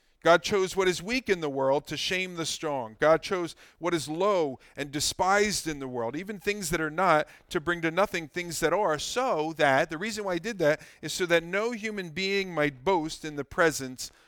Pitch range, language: 135-180 Hz, English